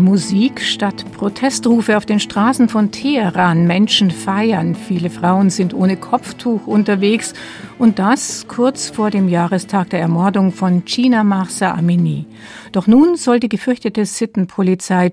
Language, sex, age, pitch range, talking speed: German, female, 50-69, 190-235 Hz, 135 wpm